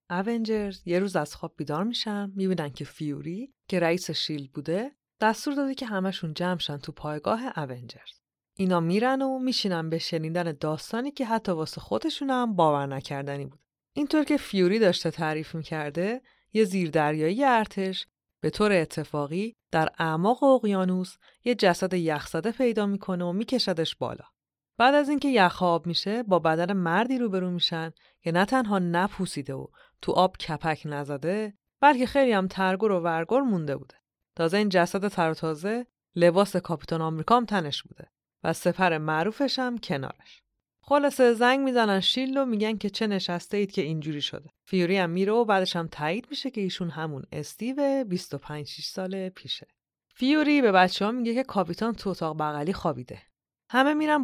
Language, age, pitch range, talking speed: Persian, 30-49, 165-225 Hz, 160 wpm